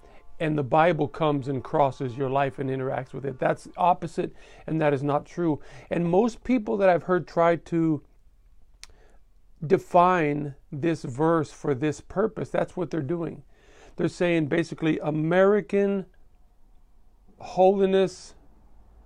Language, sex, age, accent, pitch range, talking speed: English, male, 50-69, American, 135-175 Hz, 135 wpm